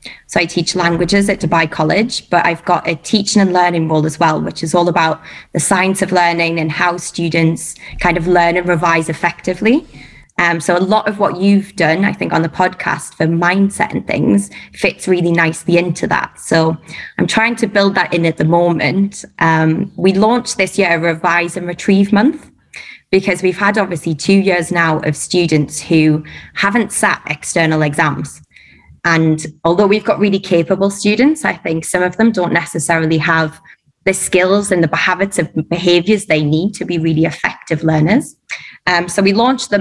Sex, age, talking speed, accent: female, 20-39, 185 wpm, British